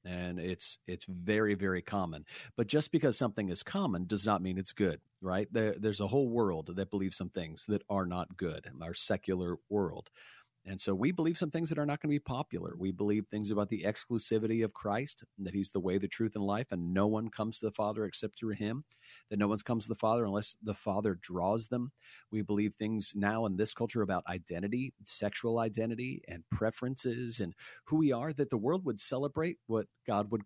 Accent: American